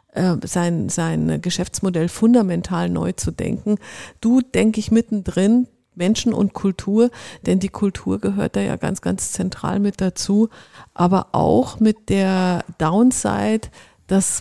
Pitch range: 180-215 Hz